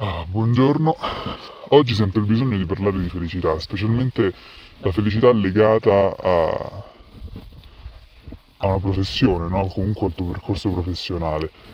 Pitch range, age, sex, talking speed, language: 90-105 Hz, 20-39, female, 120 wpm, Italian